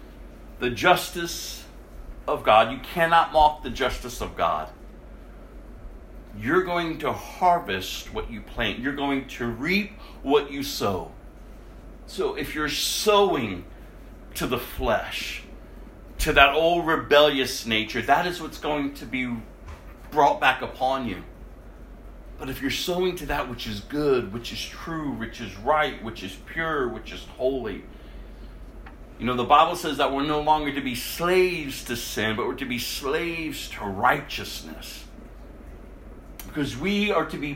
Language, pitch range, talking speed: English, 130-170 Hz, 150 wpm